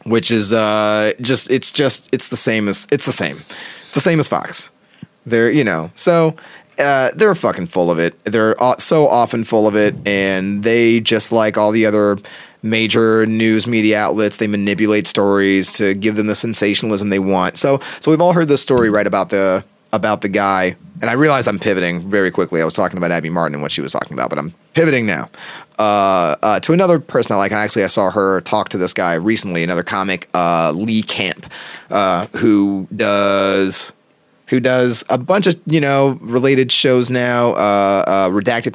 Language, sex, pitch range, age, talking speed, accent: English, male, 100-130 Hz, 30-49, 200 wpm, American